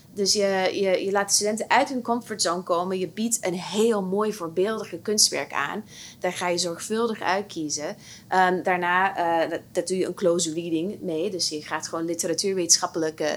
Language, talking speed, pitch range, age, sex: Dutch, 180 wpm, 170-200 Hz, 20-39, female